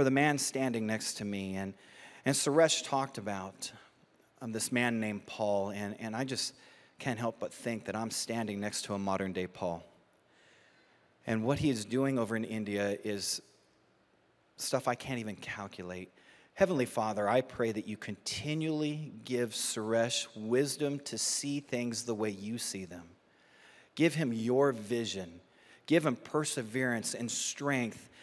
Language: English